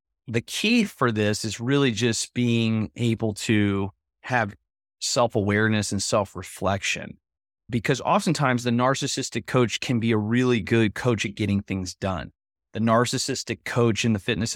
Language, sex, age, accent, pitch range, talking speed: English, male, 30-49, American, 100-120 Hz, 145 wpm